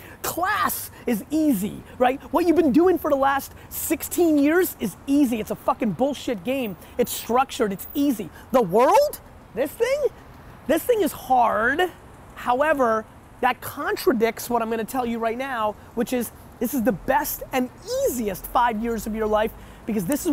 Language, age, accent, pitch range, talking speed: English, 20-39, American, 220-280 Hz, 170 wpm